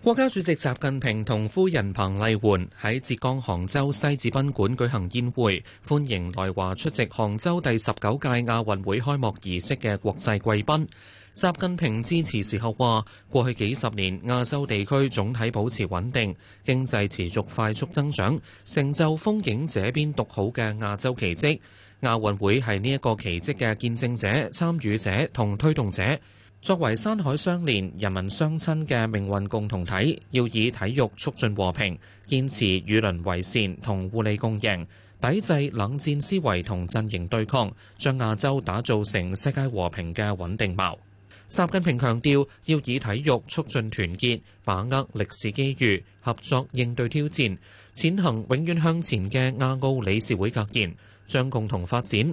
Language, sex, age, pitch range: Chinese, male, 20-39, 100-135 Hz